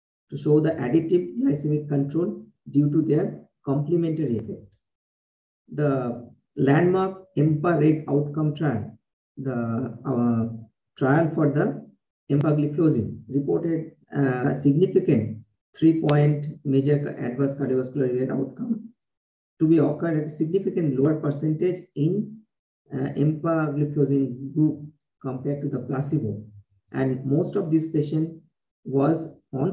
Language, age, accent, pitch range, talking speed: English, 50-69, Indian, 130-155 Hz, 115 wpm